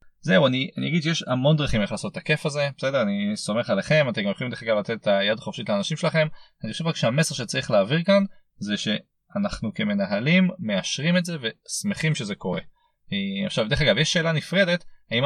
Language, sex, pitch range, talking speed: Hebrew, male, 140-195 Hz, 195 wpm